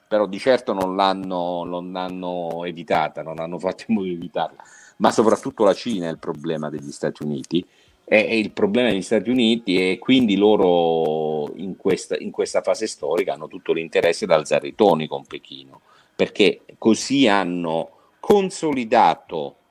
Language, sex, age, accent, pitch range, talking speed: Italian, male, 40-59, native, 85-130 Hz, 160 wpm